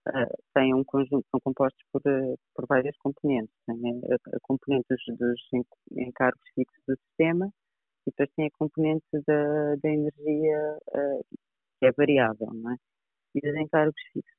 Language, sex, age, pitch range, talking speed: Portuguese, female, 30-49, 125-145 Hz, 140 wpm